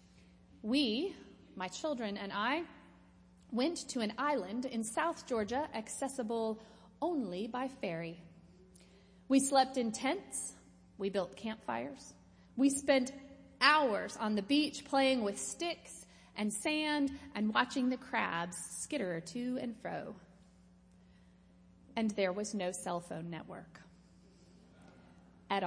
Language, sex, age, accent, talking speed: English, female, 30-49, American, 115 wpm